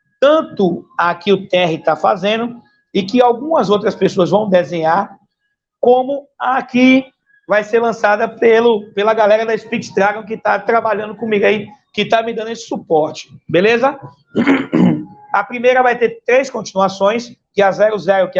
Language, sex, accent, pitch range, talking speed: Portuguese, male, Brazilian, 185-220 Hz, 160 wpm